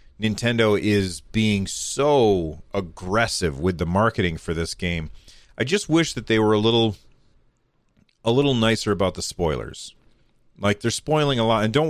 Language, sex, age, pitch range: English, male, 40-59, 95-120 Hz